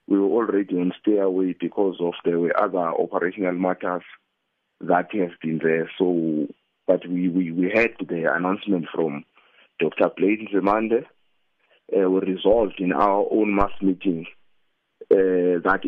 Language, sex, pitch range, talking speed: English, male, 85-100 Hz, 140 wpm